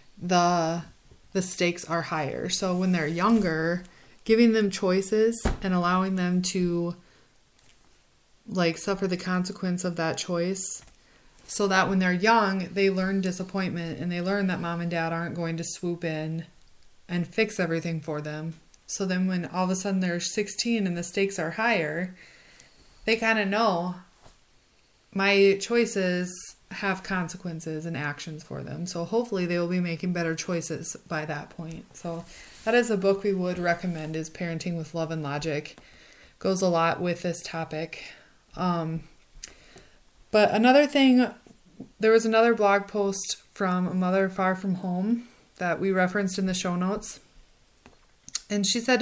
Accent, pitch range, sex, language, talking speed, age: American, 170-200 Hz, female, English, 160 wpm, 30-49